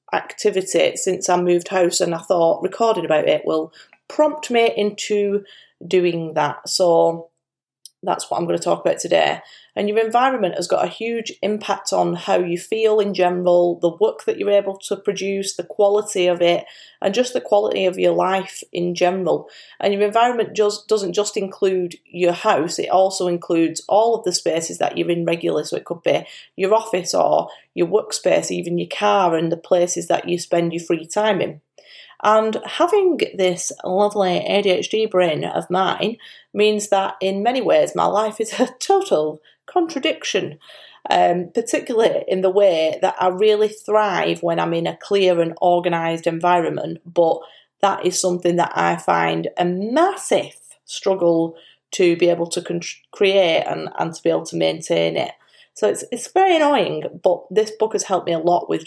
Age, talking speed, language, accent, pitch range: 30-49, 180 wpm, English, British, 175-215 Hz